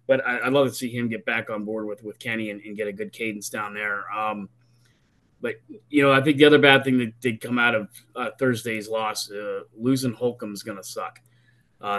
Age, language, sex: 20-39, English, male